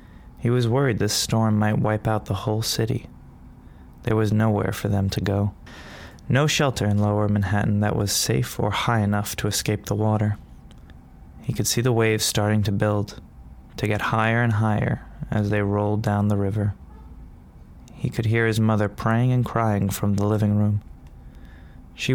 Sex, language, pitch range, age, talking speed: male, English, 100-110 Hz, 20-39, 175 wpm